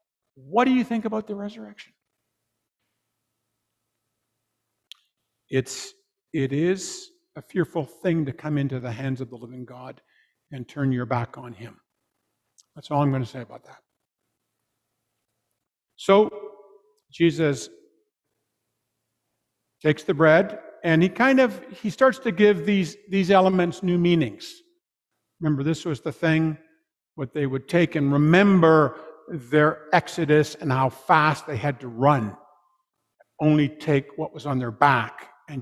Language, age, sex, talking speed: English, 50-69, male, 140 wpm